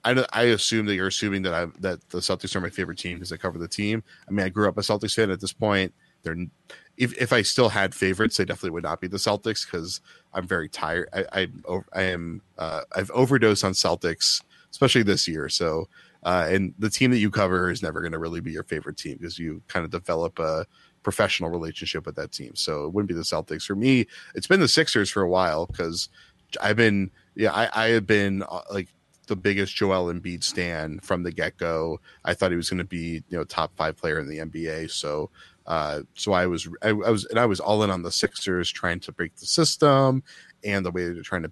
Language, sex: English, male